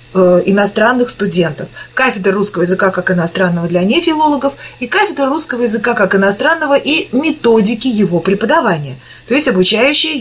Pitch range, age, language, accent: 190-270 Hz, 30-49, Russian, native